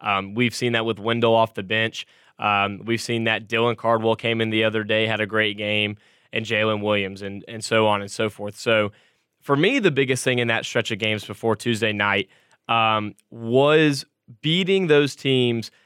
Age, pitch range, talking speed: 10-29, 110-120 Hz, 200 wpm